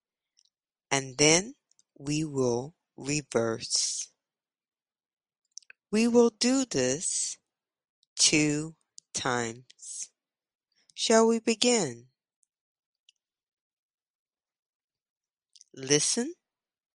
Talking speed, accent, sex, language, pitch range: 55 wpm, American, female, English, 130-180 Hz